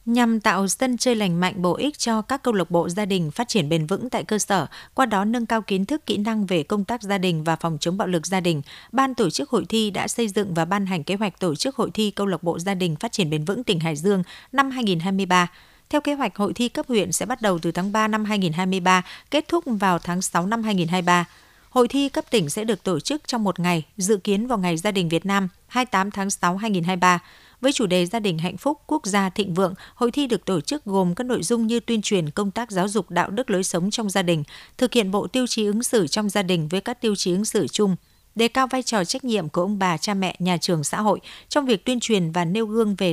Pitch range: 180-230 Hz